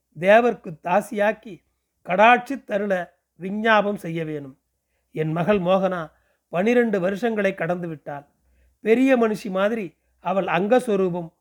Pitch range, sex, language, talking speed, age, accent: 170-210 Hz, male, Tamil, 95 wpm, 40-59, native